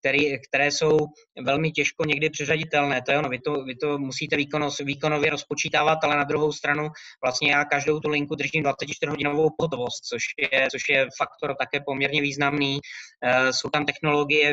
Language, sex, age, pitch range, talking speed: Czech, male, 20-39, 140-150 Hz, 155 wpm